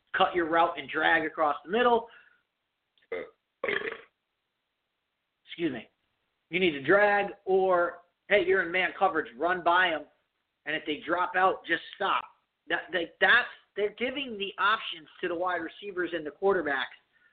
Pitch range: 155-195 Hz